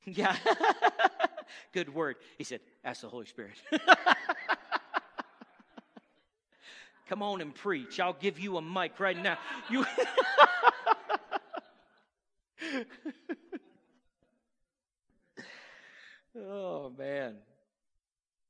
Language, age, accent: English, 40-59, American